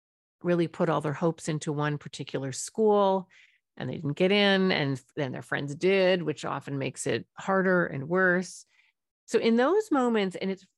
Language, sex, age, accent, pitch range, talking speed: English, female, 40-59, American, 150-185 Hz, 180 wpm